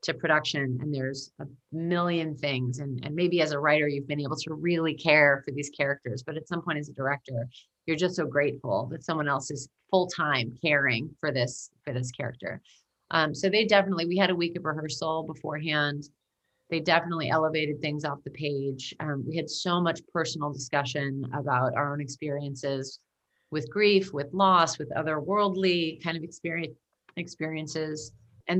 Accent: American